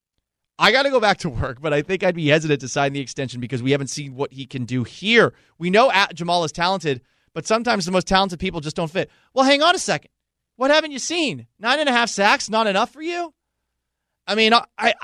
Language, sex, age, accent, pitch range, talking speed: English, male, 30-49, American, 130-190 Hz, 245 wpm